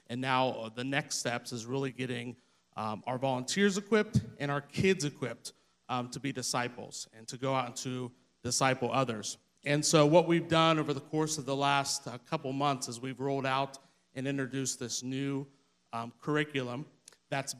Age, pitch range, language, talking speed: 30-49, 125-150 Hz, English, 185 wpm